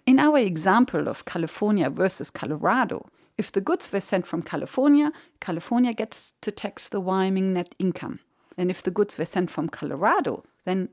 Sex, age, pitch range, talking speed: female, 50-69, 175-255 Hz, 170 wpm